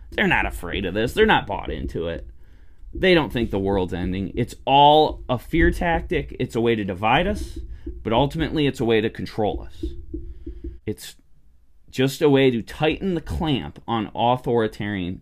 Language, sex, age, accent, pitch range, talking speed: English, male, 20-39, American, 95-135 Hz, 175 wpm